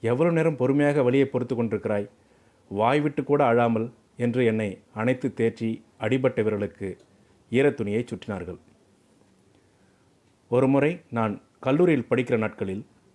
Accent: native